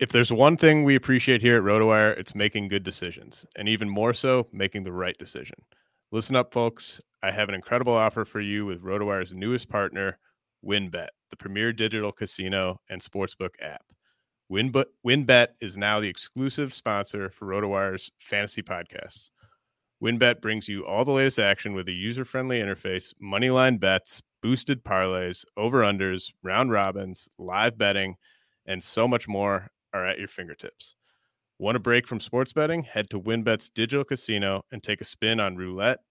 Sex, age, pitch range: male, 30-49, 100-120 Hz